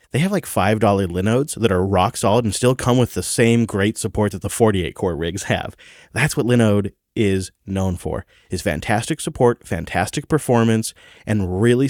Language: English